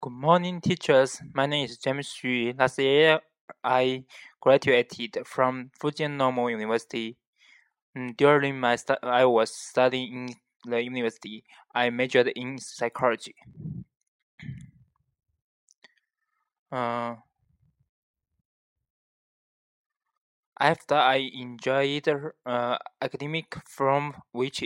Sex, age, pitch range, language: male, 20-39, 125-140 Hz, Chinese